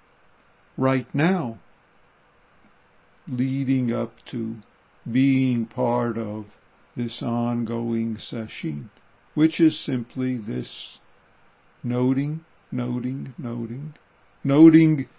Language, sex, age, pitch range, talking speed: English, male, 60-79, 120-150 Hz, 75 wpm